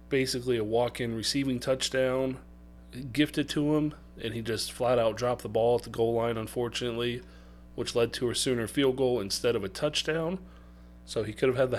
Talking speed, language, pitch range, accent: 195 wpm, English, 110-135 Hz, American